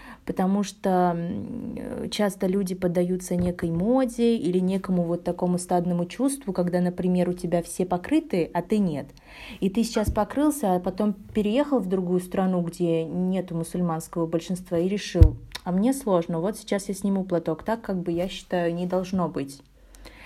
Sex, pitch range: female, 175-205 Hz